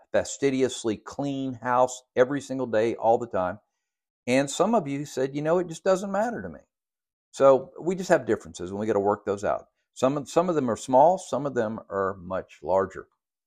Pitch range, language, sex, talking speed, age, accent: 95-130 Hz, English, male, 210 wpm, 50-69, American